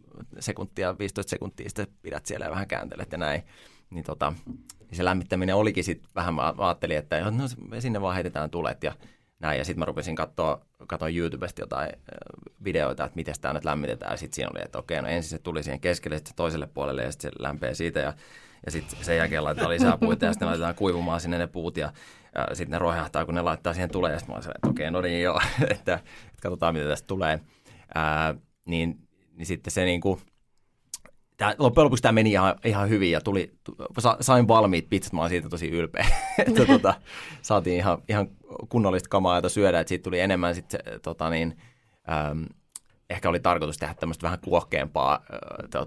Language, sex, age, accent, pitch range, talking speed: Finnish, male, 20-39, native, 80-100 Hz, 200 wpm